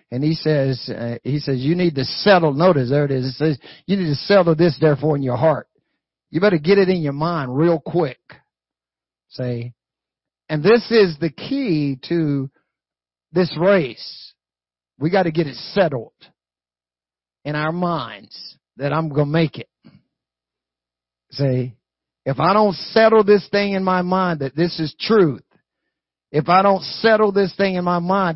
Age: 50-69